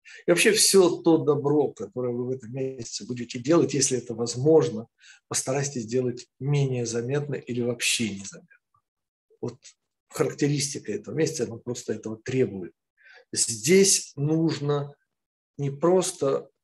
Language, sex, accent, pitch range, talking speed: Russian, male, native, 125-155 Hz, 125 wpm